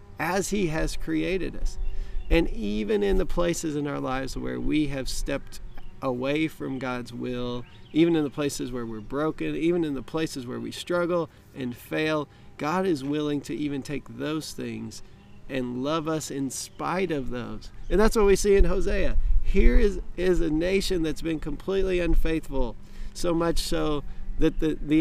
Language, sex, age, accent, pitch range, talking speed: English, male, 40-59, American, 120-160 Hz, 180 wpm